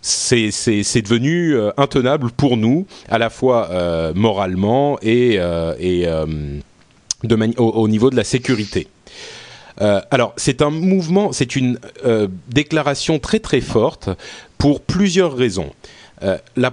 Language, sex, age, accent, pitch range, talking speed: French, male, 30-49, French, 105-150 Hz, 150 wpm